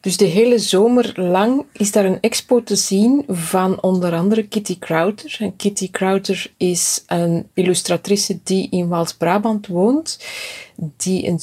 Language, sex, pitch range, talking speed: Dutch, female, 165-200 Hz, 145 wpm